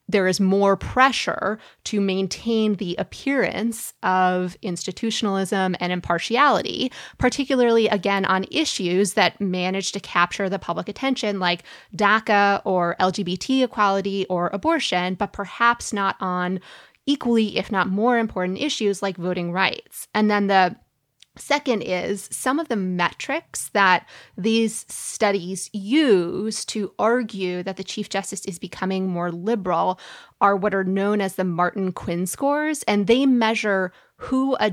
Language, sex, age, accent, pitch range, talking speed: English, female, 20-39, American, 185-220 Hz, 140 wpm